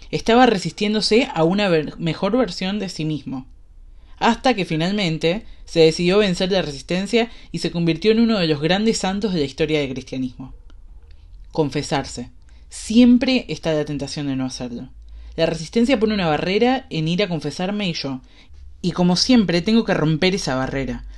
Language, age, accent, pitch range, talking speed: Spanish, 20-39, Argentinian, 140-205 Hz, 165 wpm